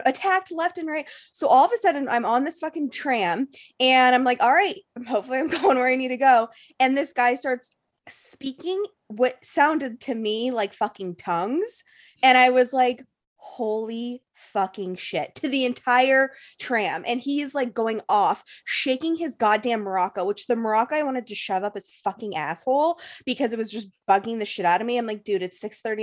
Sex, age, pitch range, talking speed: female, 20-39, 210-265 Hz, 200 wpm